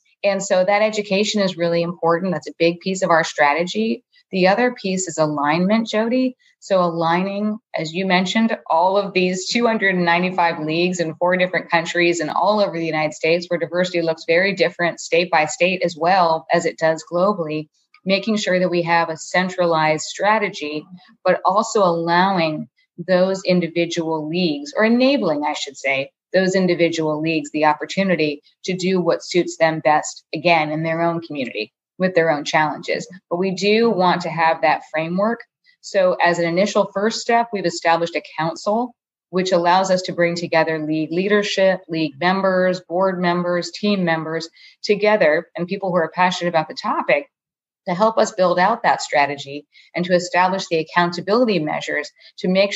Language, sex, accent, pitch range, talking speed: English, female, American, 165-195 Hz, 170 wpm